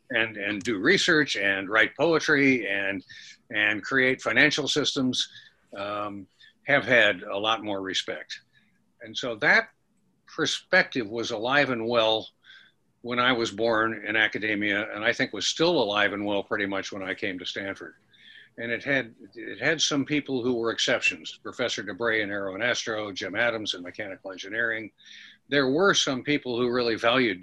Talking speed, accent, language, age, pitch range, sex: 165 wpm, American, English, 60-79, 105-140 Hz, male